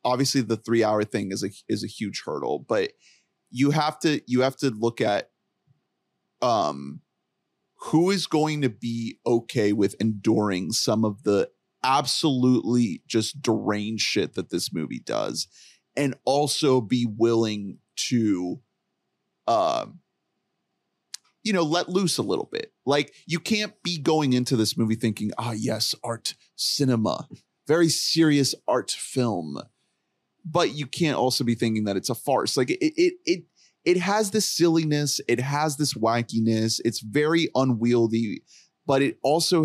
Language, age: English, 30-49